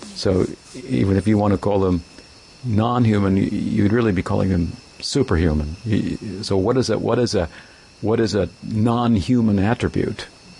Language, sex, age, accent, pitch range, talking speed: English, male, 60-79, American, 95-110 Hz, 155 wpm